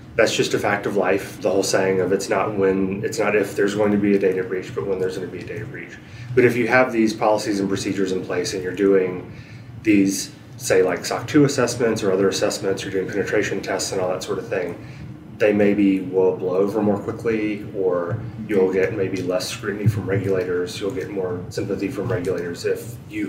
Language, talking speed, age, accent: English, 225 wpm, 30-49, American